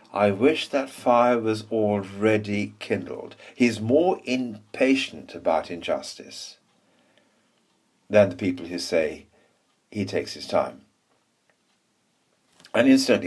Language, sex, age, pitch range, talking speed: English, male, 60-79, 100-135 Hz, 105 wpm